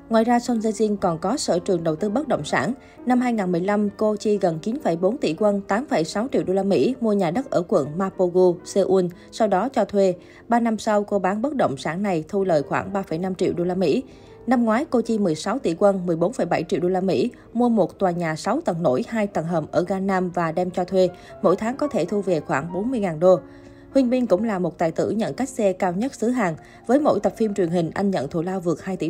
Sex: female